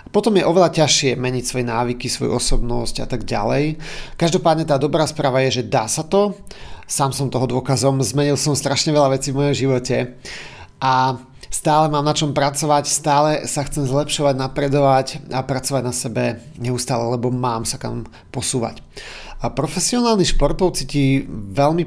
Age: 40-59